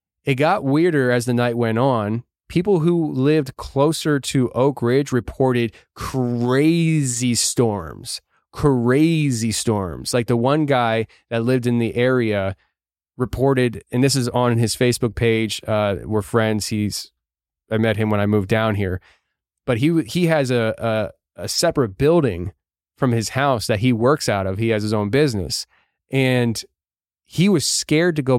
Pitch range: 110-135 Hz